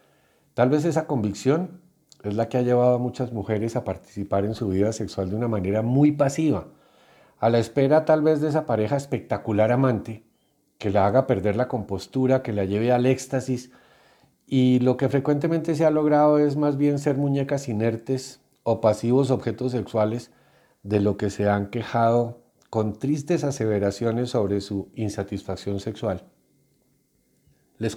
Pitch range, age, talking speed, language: 100-130 Hz, 40-59, 160 wpm, Spanish